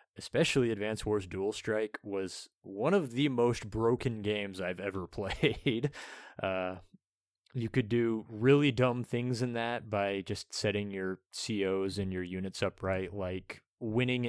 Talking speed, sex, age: 145 wpm, male, 20-39